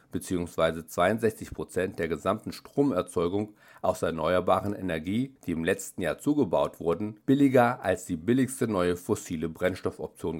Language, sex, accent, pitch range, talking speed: English, male, German, 85-110 Hz, 125 wpm